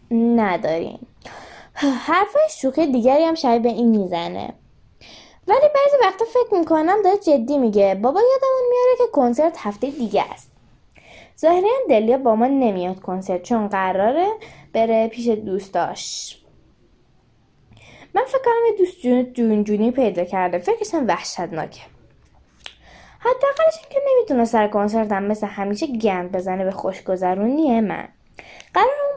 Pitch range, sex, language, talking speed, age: 205-315 Hz, female, Persian, 130 wpm, 10-29